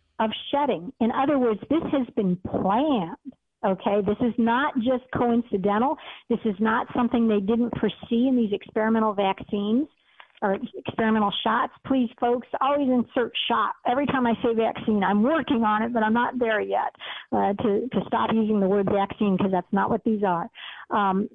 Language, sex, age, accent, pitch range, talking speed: English, female, 50-69, American, 205-245 Hz, 175 wpm